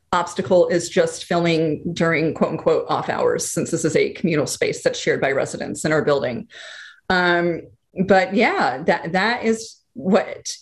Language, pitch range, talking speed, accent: English, 160-200 Hz, 165 wpm, American